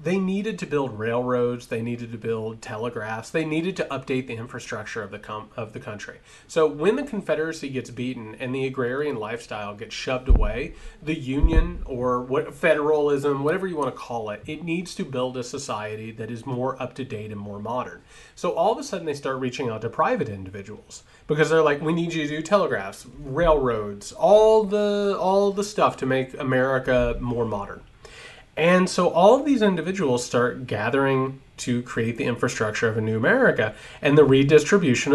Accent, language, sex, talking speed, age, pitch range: American, English, male, 190 wpm, 30-49, 120-175 Hz